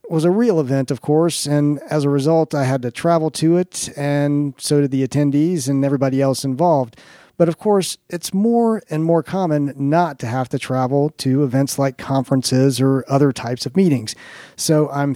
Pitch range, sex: 135-165 Hz, male